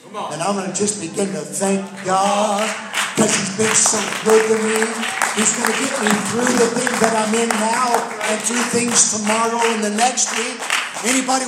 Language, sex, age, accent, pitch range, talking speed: English, male, 50-69, American, 220-295 Hz, 195 wpm